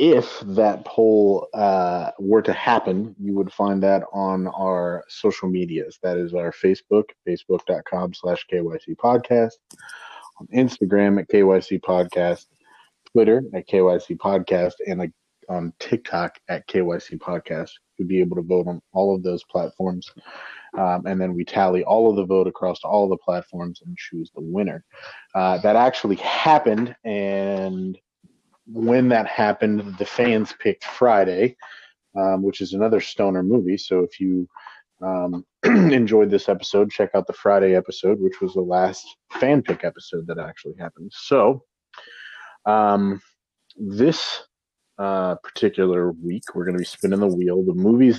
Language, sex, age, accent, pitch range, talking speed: English, male, 30-49, American, 90-105 Hz, 150 wpm